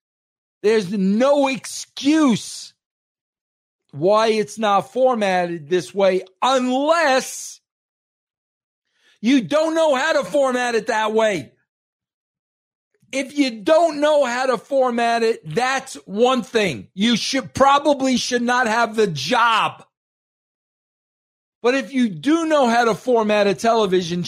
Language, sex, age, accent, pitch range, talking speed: English, male, 50-69, American, 175-245 Hz, 120 wpm